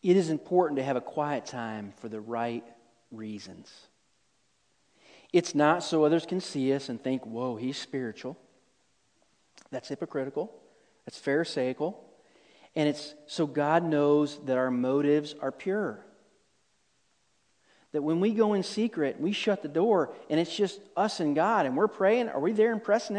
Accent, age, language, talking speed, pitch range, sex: American, 40-59, English, 160 wpm, 165-245 Hz, male